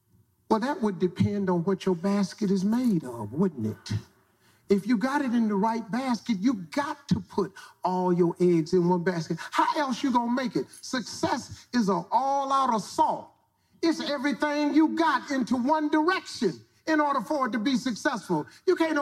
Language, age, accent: English, 40-59, American